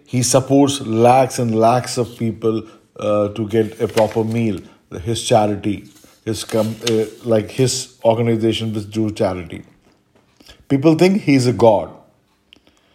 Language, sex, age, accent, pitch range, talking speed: English, male, 50-69, Indian, 105-130 Hz, 135 wpm